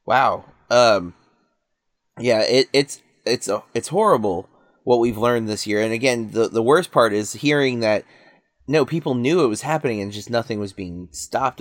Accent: American